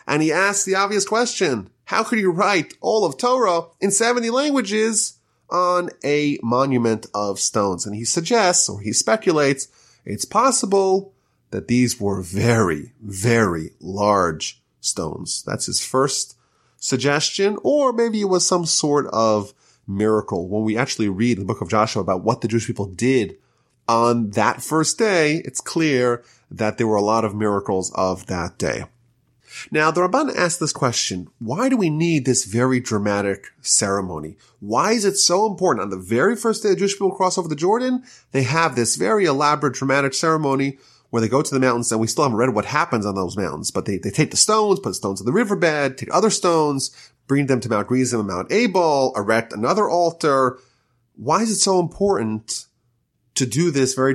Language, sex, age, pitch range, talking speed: English, male, 30-49, 110-180 Hz, 185 wpm